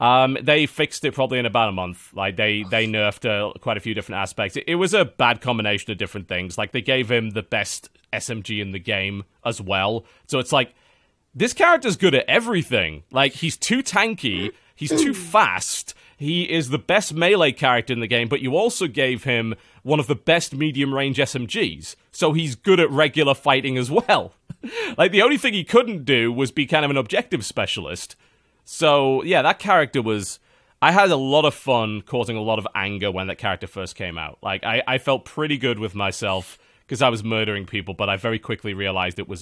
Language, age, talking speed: English, 30-49, 215 wpm